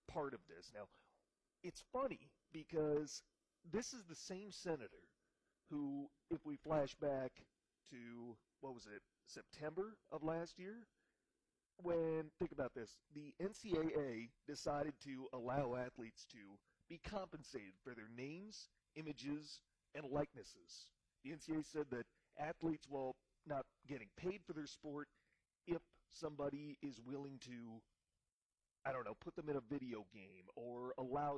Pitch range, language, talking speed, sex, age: 120-155 Hz, English, 140 wpm, male, 40-59